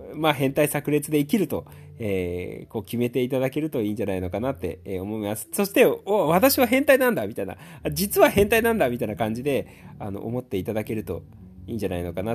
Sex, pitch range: male, 95-150 Hz